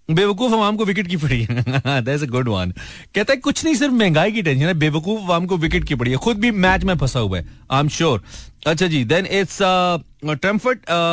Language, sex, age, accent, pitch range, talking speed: Hindi, male, 40-59, native, 125-190 Hz, 210 wpm